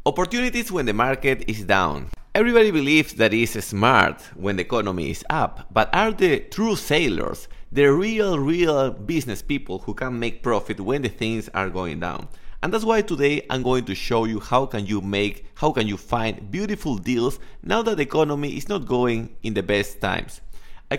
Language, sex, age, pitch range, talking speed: English, male, 30-49, 100-140 Hz, 190 wpm